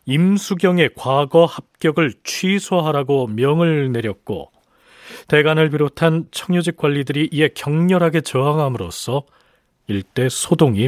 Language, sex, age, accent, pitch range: Korean, male, 40-59, native, 125-165 Hz